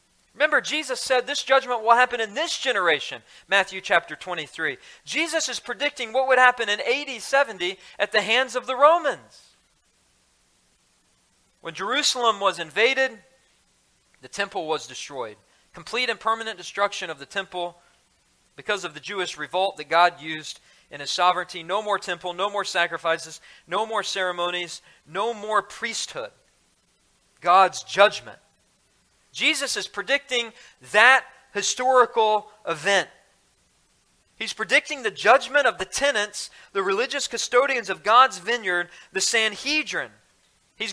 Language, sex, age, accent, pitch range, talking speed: English, male, 40-59, American, 175-250 Hz, 130 wpm